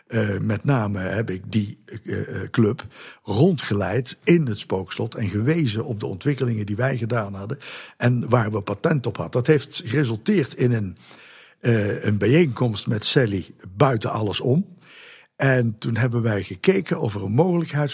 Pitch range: 110-135 Hz